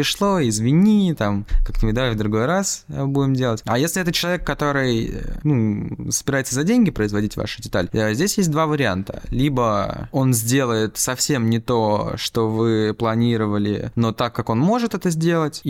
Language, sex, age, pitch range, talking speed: Russian, male, 20-39, 110-145 Hz, 165 wpm